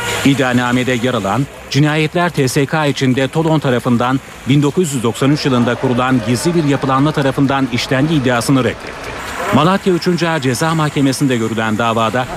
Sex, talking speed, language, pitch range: male, 115 wpm, Turkish, 120-145 Hz